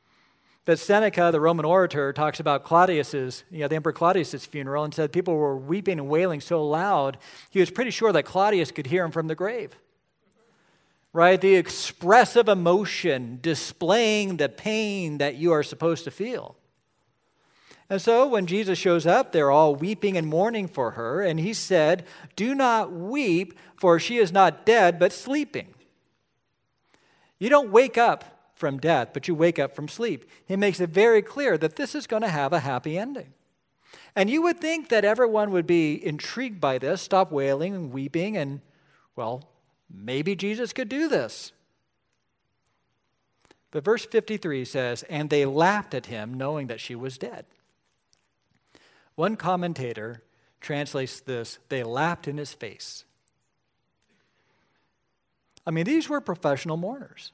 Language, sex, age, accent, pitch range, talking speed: English, male, 50-69, American, 145-205 Hz, 160 wpm